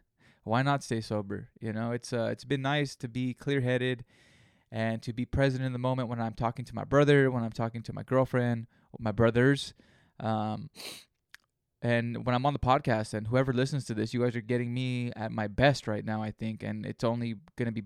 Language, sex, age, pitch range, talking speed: English, male, 20-39, 115-135 Hz, 220 wpm